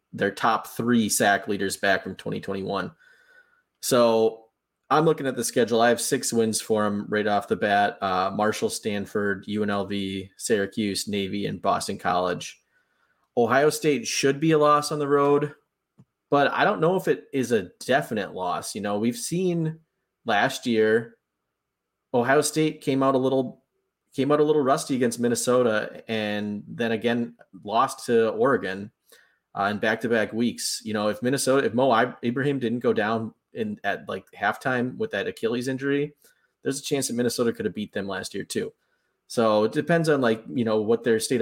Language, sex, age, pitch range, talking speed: English, male, 30-49, 105-140 Hz, 175 wpm